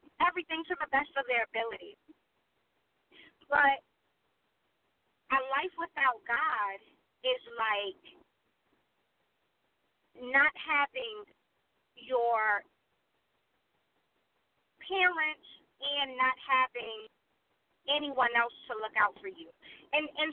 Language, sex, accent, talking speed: English, female, American, 90 wpm